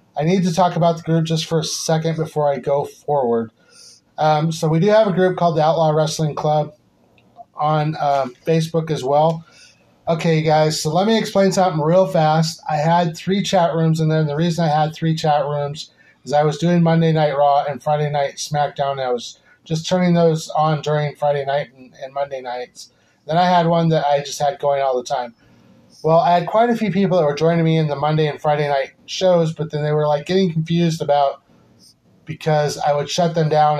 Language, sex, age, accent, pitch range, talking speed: English, male, 30-49, American, 145-165 Hz, 220 wpm